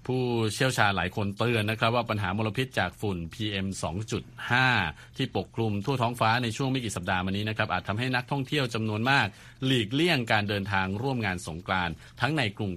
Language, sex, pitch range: Thai, male, 95-125 Hz